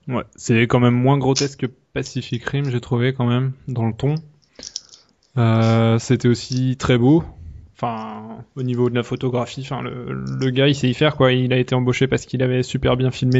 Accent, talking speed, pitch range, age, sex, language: French, 205 wpm, 125-140 Hz, 20-39, male, French